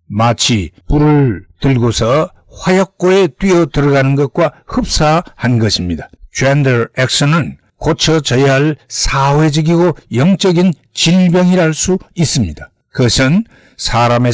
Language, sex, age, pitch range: Korean, male, 60-79, 125-180 Hz